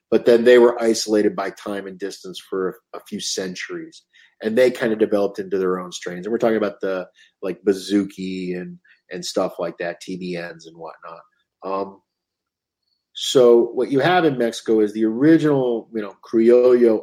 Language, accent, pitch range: English, American, 95-120 Hz